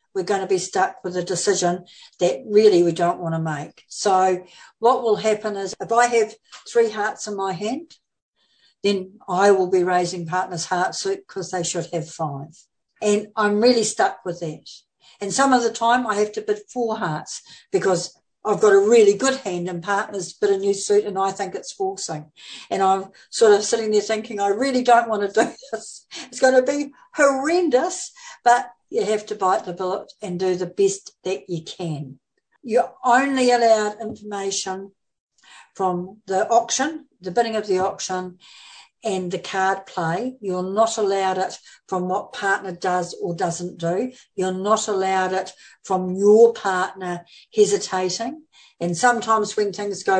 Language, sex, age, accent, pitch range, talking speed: English, female, 60-79, Australian, 185-235 Hz, 180 wpm